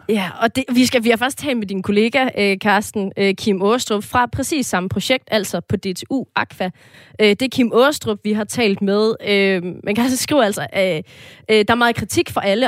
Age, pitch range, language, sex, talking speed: 30-49, 185-240 Hz, Danish, female, 220 wpm